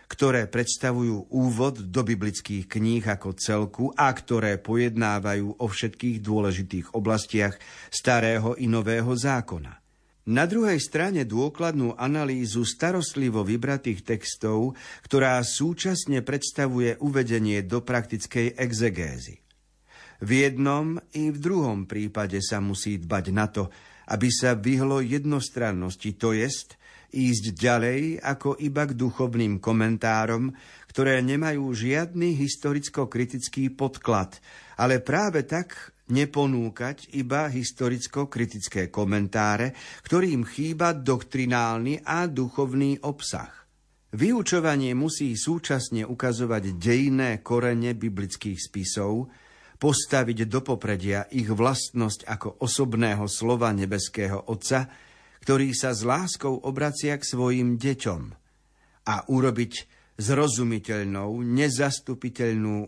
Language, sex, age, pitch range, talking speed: Slovak, male, 50-69, 110-135 Hz, 100 wpm